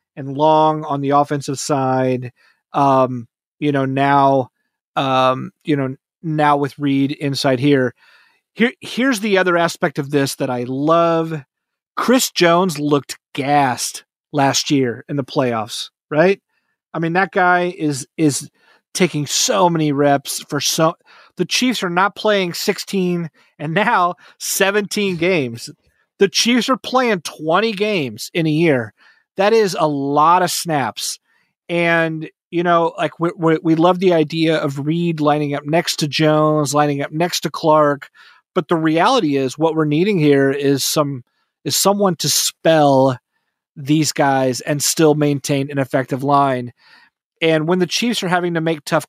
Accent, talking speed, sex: American, 155 wpm, male